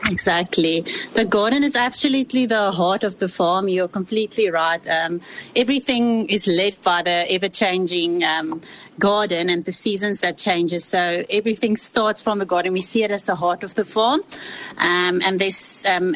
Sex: female